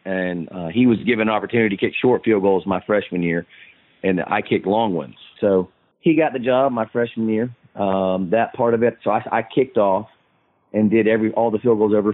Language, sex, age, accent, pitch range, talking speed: English, male, 40-59, American, 95-115 Hz, 225 wpm